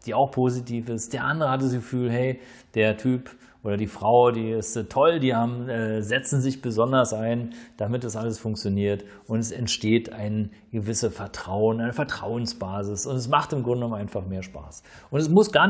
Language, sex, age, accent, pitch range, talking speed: German, male, 40-59, German, 110-135 Hz, 190 wpm